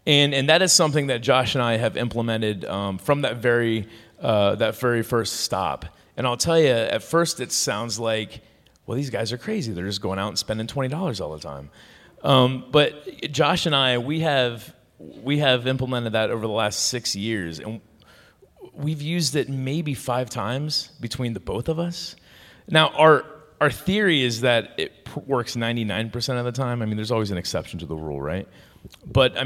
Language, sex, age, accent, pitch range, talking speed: English, male, 30-49, American, 100-130 Hz, 200 wpm